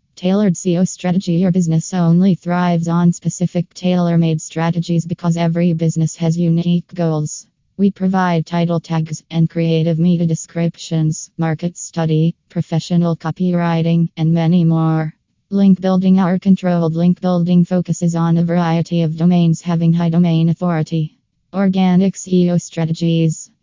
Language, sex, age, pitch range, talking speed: English, female, 20-39, 165-180 Hz, 130 wpm